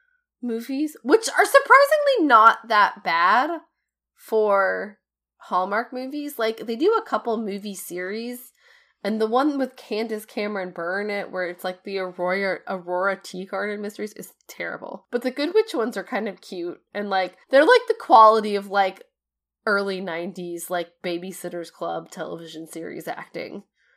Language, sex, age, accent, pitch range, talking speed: English, female, 20-39, American, 185-275 Hz, 155 wpm